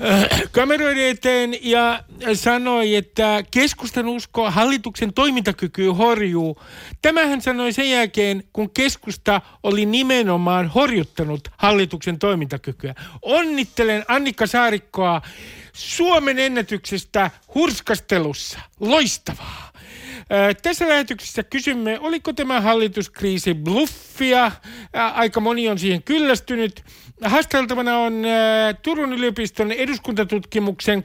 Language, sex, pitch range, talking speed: Finnish, male, 200-260 Hz, 85 wpm